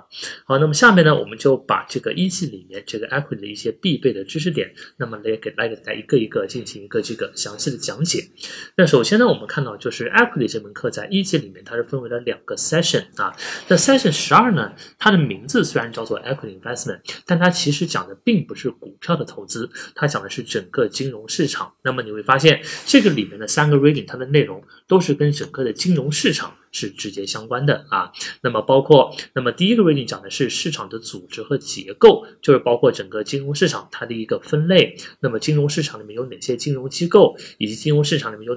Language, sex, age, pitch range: Chinese, male, 20-39, 125-180 Hz